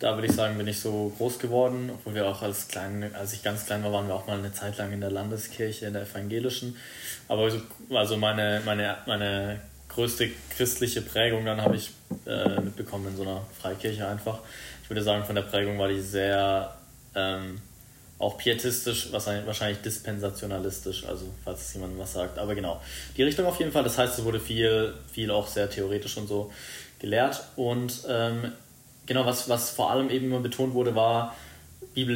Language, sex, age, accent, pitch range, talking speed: German, male, 20-39, German, 105-125 Hz, 185 wpm